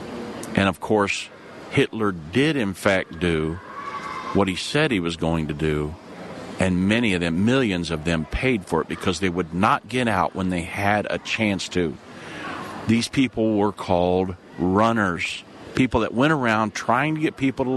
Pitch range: 95-125 Hz